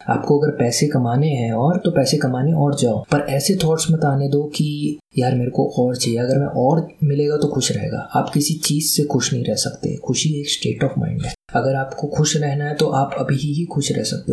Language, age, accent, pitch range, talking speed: Hindi, 20-39, native, 125-150 Hz, 235 wpm